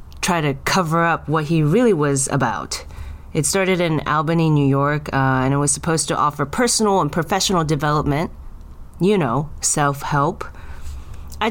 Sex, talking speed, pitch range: female, 155 wpm, 135-180 Hz